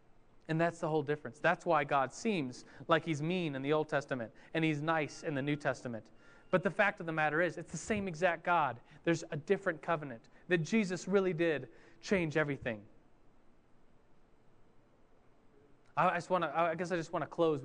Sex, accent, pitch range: male, American, 145-170 Hz